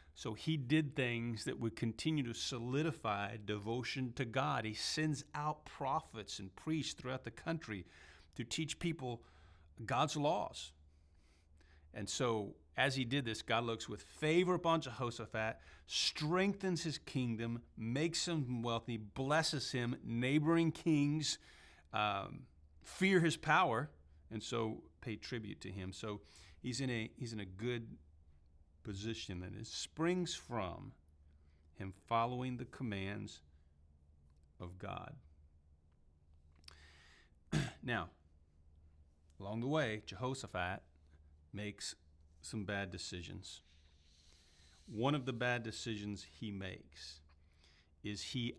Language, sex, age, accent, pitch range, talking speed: English, male, 40-59, American, 75-125 Hz, 115 wpm